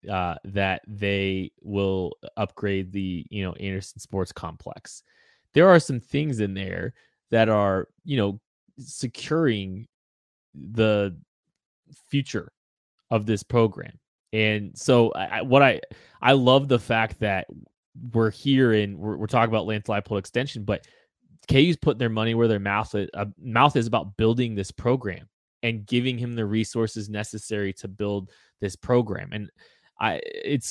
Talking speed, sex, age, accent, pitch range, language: 150 wpm, male, 20-39, American, 100-125 Hz, English